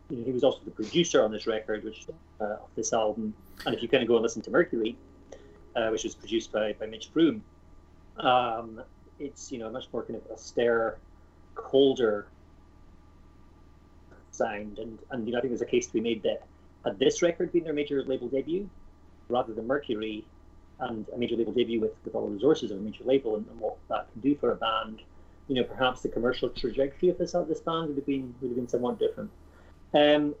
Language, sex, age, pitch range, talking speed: English, male, 30-49, 105-140 Hz, 220 wpm